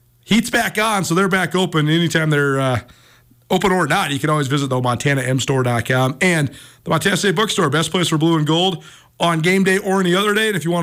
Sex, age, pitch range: male, 40-59, 130-180 Hz